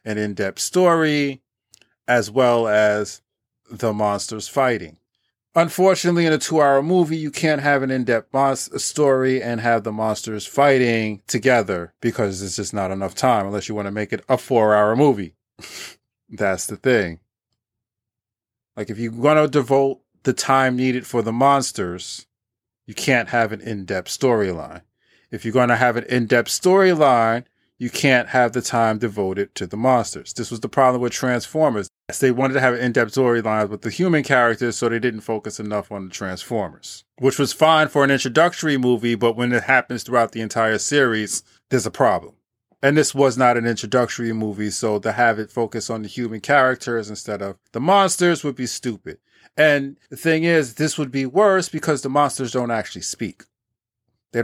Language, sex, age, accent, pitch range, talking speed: English, male, 30-49, American, 110-135 Hz, 175 wpm